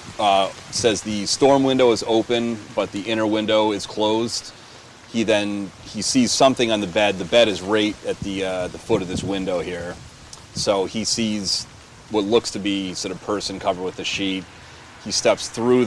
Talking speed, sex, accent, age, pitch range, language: 195 wpm, male, American, 30-49, 95-115 Hz, English